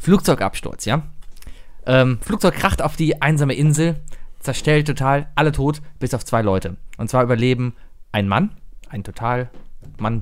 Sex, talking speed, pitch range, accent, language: male, 145 wpm, 105-135 Hz, German, German